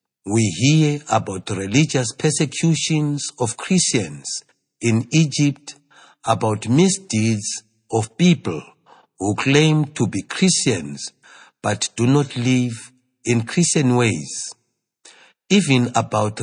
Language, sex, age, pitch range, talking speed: English, male, 60-79, 110-155 Hz, 100 wpm